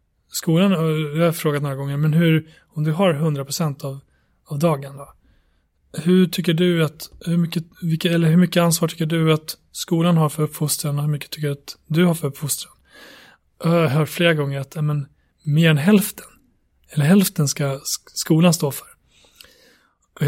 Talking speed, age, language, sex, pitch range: 150 wpm, 30-49, Swedish, male, 140-165 Hz